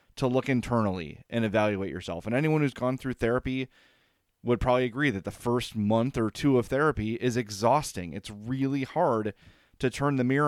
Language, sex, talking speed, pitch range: English, male, 185 wpm, 105-130 Hz